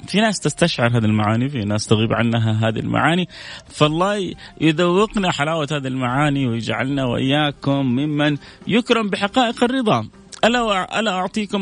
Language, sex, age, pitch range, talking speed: Arabic, male, 30-49, 120-180 Hz, 125 wpm